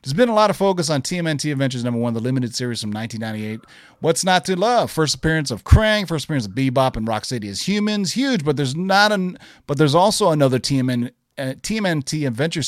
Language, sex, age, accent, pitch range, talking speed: English, male, 30-49, American, 125-175 Hz, 210 wpm